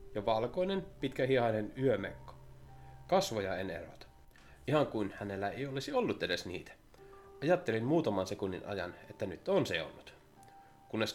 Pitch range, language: 100-140 Hz, Finnish